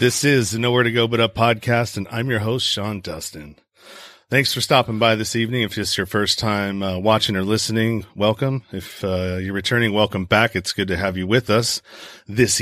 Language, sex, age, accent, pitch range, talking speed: English, male, 40-59, American, 105-130 Hz, 220 wpm